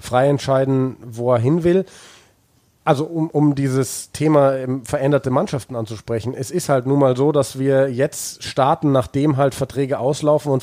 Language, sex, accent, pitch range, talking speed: German, male, German, 120-140 Hz, 165 wpm